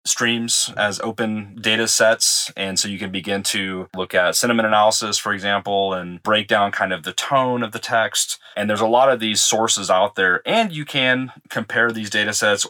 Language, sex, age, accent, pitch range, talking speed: English, male, 30-49, American, 95-110 Hz, 205 wpm